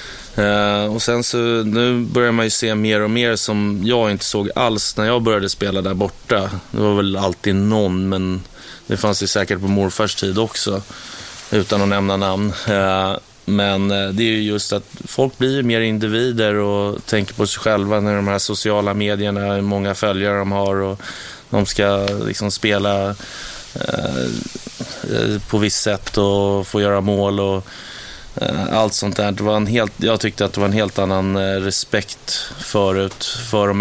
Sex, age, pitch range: male, 20-39, 100-110 Hz